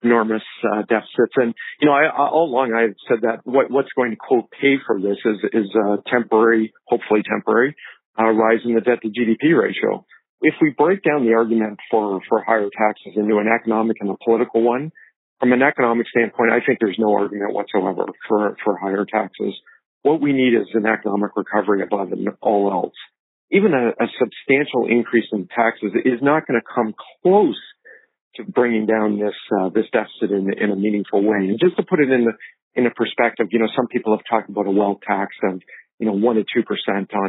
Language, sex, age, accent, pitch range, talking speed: English, male, 50-69, American, 105-120 Hz, 200 wpm